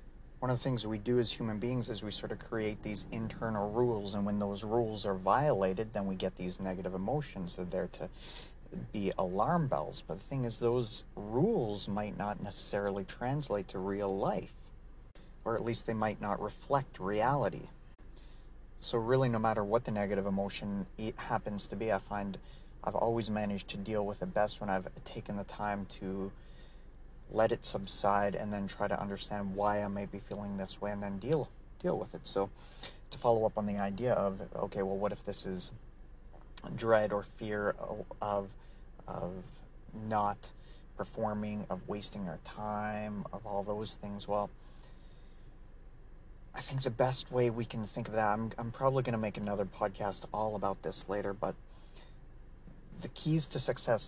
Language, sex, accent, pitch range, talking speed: English, male, American, 100-115 Hz, 180 wpm